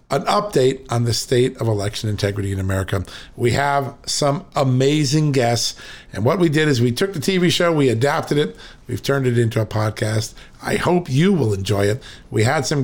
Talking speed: 200 wpm